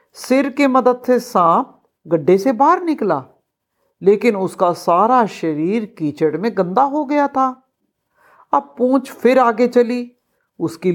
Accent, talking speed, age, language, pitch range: native, 135 wpm, 60-79, Hindi, 195-275 Hz